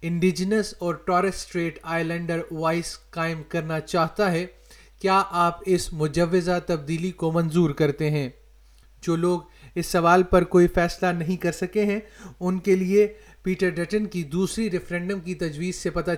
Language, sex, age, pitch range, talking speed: Urdu, male, 30-49, 165-185 Hz, 155 wpm